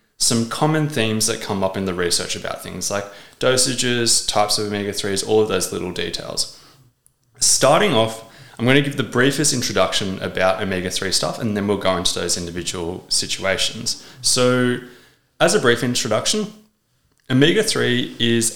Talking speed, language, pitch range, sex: 155 wpm, English, 95-130 Hz, male